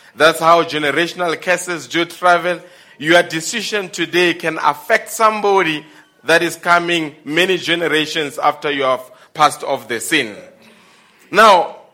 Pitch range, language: 165-215 Hz, English